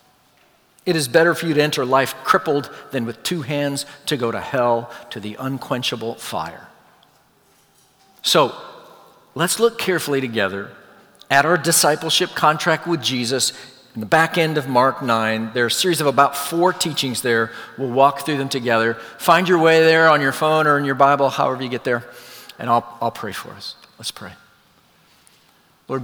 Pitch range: 115-155 Hz